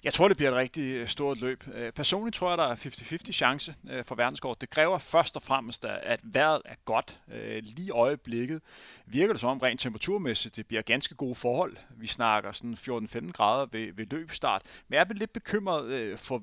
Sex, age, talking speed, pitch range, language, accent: male, 30-49, 190 wpm, 120-150 Hz, Danish, native